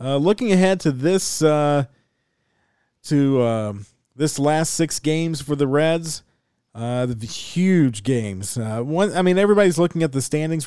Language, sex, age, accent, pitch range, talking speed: English, male, 40-59, American, 125-155 Hz, 165 wpm